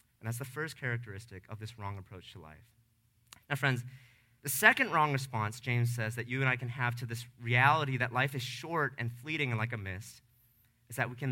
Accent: American